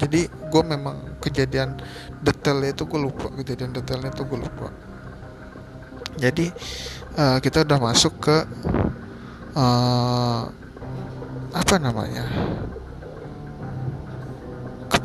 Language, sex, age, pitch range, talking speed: Malay, male, 20-39, 115-135 Hz, 90 wpm